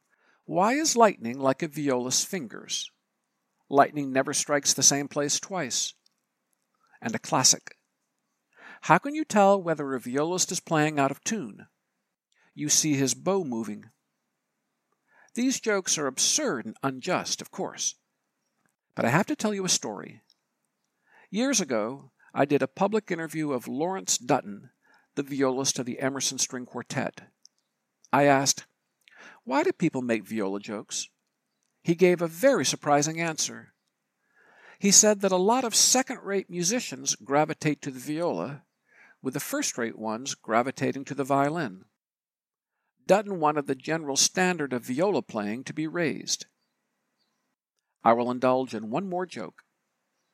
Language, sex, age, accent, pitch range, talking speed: English, male, 60-79, American, 135-190 Hz, 140 wpm